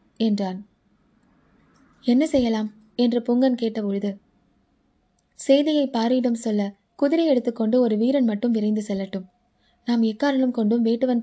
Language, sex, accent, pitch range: Tamil, female, native, 210-270 Hz